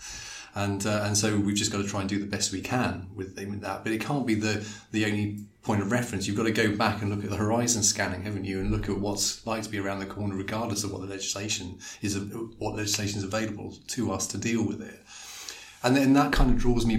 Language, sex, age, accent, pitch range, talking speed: English, male, 30-49, British, 100-110 Hz, 260 wpm